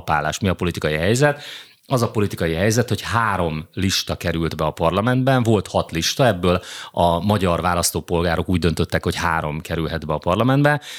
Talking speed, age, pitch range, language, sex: 170 wpm, 30-49, 85-110 Hz, Hungarian, male